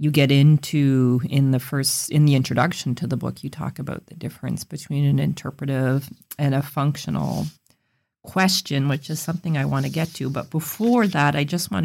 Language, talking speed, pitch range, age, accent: English, 195 wpm, 140-160 Hz, 40-59, American